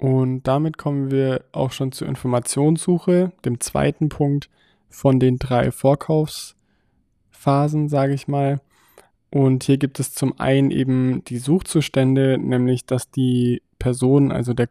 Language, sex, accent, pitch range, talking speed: German, male, German, 120-135 Hz, 135 wpm